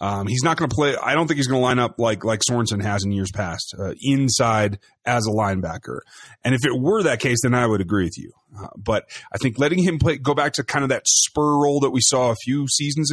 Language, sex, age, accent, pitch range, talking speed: English, male, 30-49, American, 105-140 Hz, 275 wpm